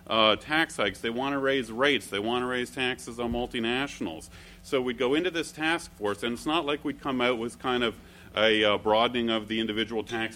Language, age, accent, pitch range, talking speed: English, 40-59, American, 100-125 Hz, 230 wpm